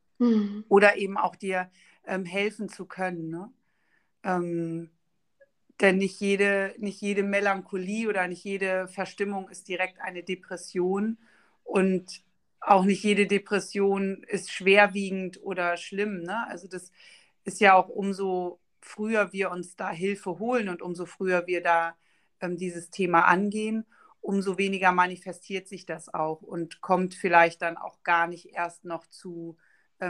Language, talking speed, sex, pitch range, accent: German, 140 wpm, female, 170-195 Hz, German